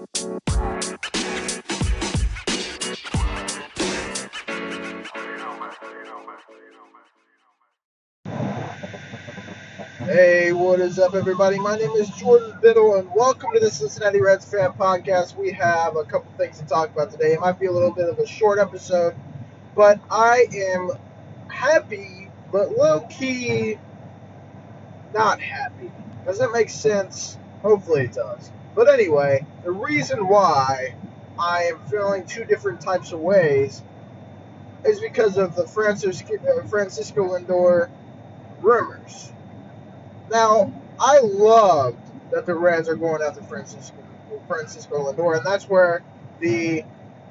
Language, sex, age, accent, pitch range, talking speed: English, male, 20-39, American, 135-210 Hz, 110 wpm